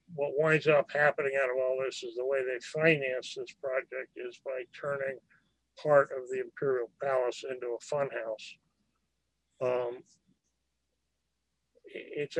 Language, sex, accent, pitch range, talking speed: English, male, American, 130-185 Hz, 135 wpm